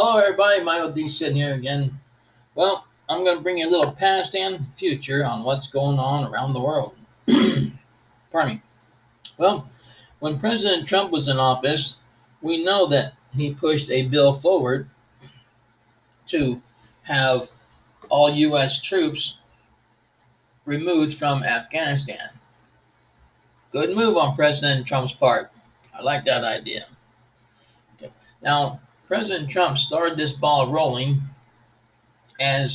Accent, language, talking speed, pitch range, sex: American, English, 125 wpm, 125-160 Hz, male